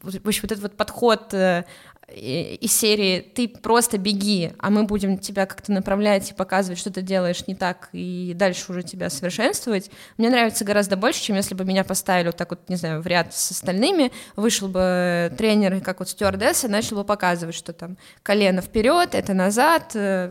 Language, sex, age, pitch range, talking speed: Russian, female, 20-39, 185-225 Hz, 185 wpm